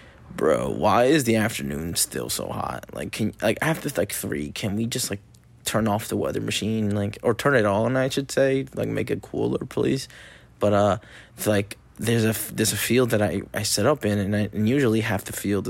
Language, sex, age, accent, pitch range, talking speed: English, male, 20-39, American, 100-115 Hz, 225 wpm